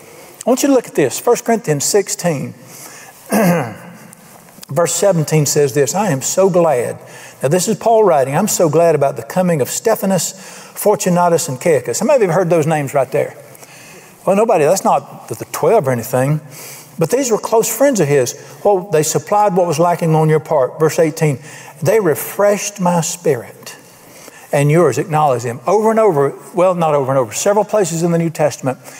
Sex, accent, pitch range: male, American, 145-190 Hz